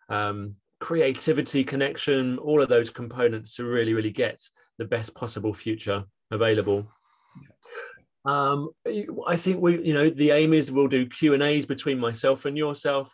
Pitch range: 120-145 Hz